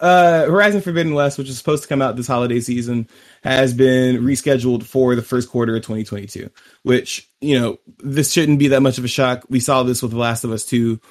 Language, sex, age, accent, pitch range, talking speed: English, male, 20-39, American, 115-135 Hz, 225 wpm